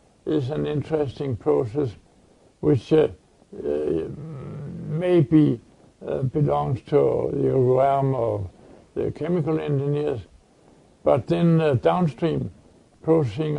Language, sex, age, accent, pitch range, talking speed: English, male, 60-79, American, 115-155 Hz, 95 wpm